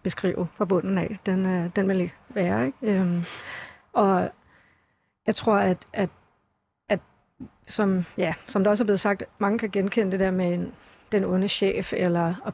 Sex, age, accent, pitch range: female, 40-59, native, 185-210 Hz